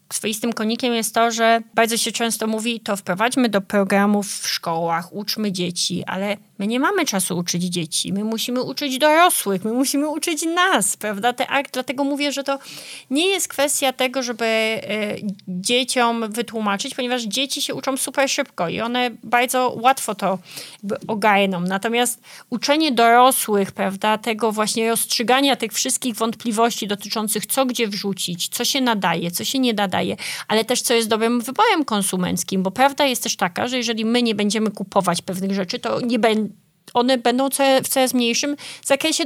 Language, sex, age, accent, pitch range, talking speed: Polish, female, 30-49, native, 200-250 Hz, 165 wpm